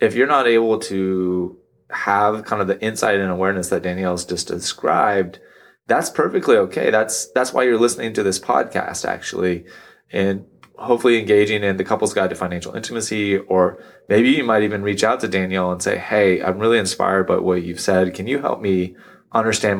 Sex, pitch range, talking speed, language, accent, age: male, 90-105 Hz, 190 wpm, English, American, 20-39